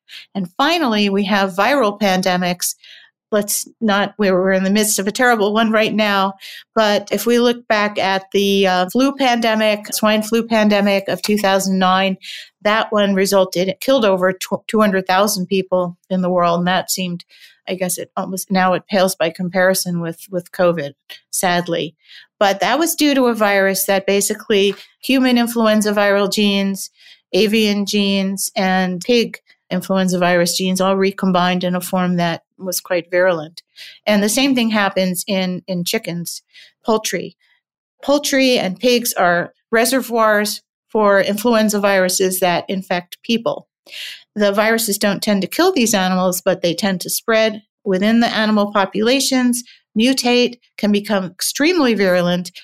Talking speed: 150 wpm